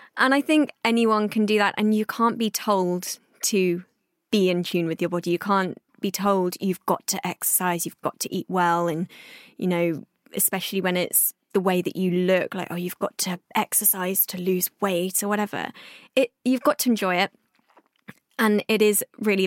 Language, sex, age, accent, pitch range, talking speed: English, female, 20-39, British, 185-225 Hz, 195 wpm